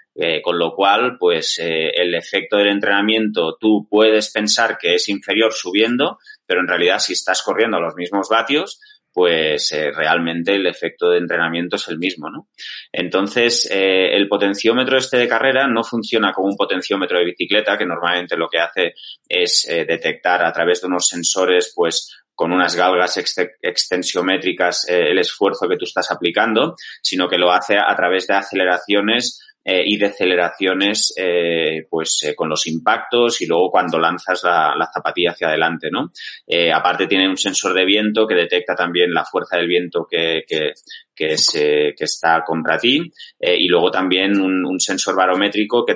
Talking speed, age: 180 wpm, 30-49